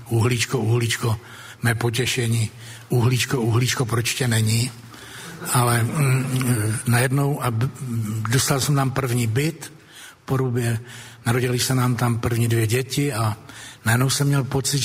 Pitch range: 120-140 Hz